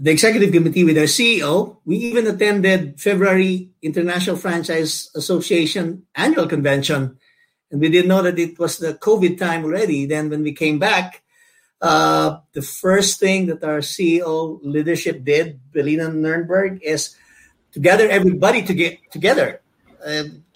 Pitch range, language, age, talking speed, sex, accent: 145-185 Hz, English, 50-69, 145 wpm, male, Filipino